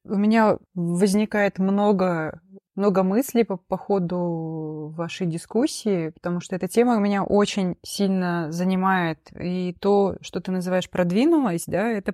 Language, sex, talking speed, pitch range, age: Russian, female, 140 wpm, 170-200 Hz, 20-39